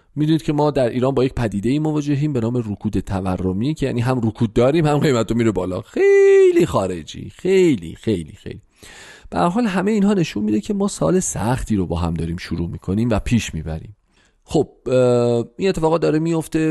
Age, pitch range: 40-59, 105-155 Hz